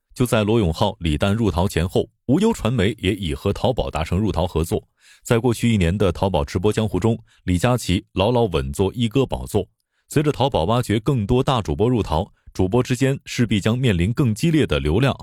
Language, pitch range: Chinese, 85-120 Hz